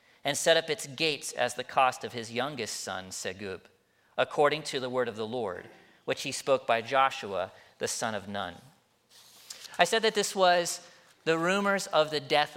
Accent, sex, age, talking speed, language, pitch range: American, male, 40-59, 185 wpm, English, 130-175 Hz